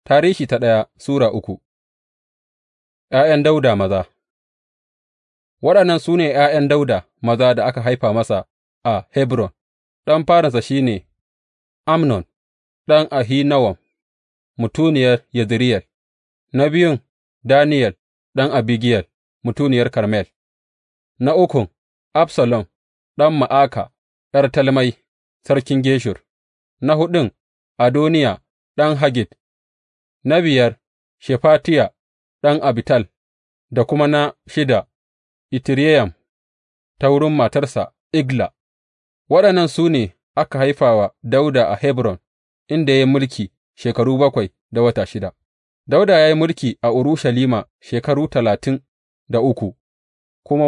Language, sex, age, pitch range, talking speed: English, male, 30-49, 100-145 Hz, 90 wpm